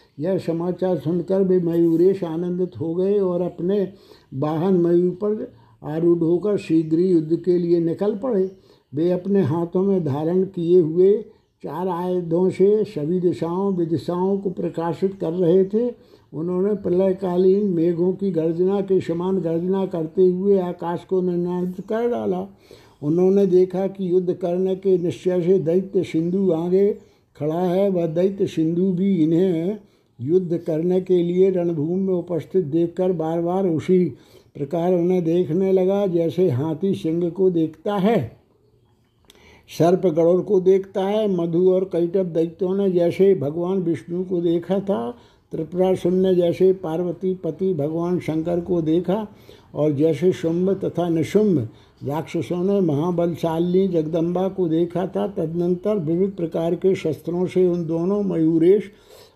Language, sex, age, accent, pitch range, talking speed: Hindi, male, 60-79, native, 165-190 Hz, 140 wpm